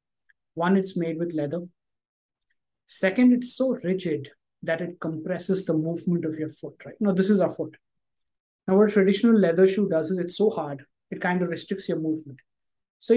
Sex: male